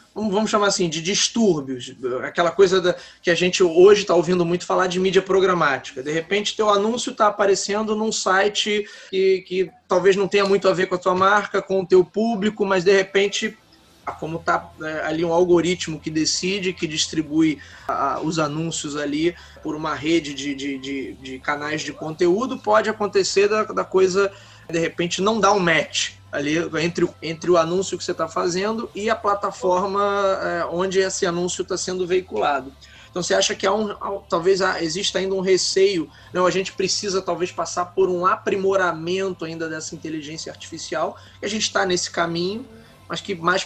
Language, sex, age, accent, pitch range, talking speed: Portuguese, male, 20-39, Brazilian, 170-205 Hz, 175 wpm